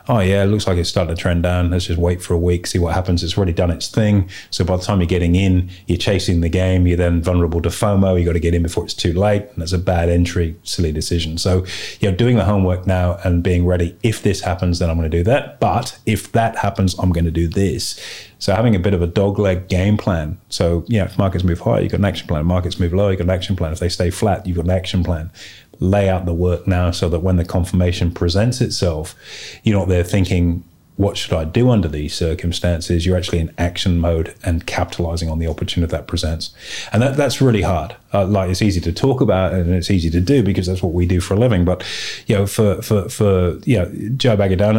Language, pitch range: English, 85-100 Hz